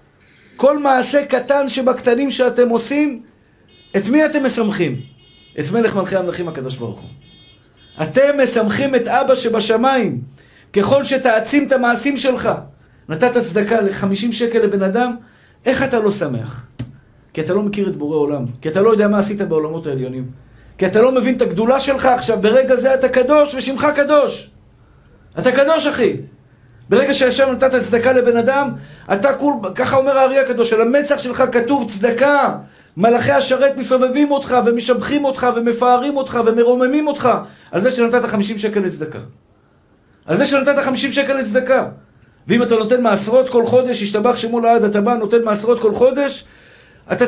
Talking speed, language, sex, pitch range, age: 155 wpm, Hebrew, male, 210-265 Hz, 50-69